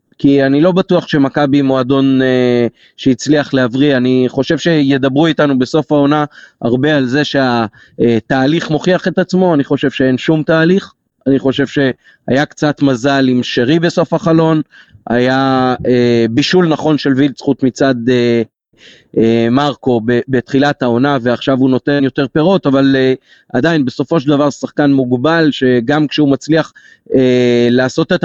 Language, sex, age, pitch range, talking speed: Hebrew, male, 30-49, 130-155 Hz, 140 wpm